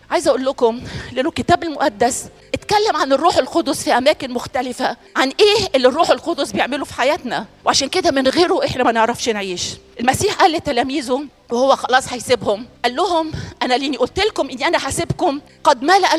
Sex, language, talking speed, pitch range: female, Arabic, 170 wpm, 300-410 Hz